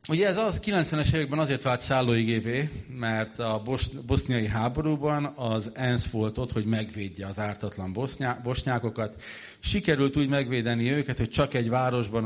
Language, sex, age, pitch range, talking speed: Hungarian, male, 40-59, 105-130 Hz, 150 wpm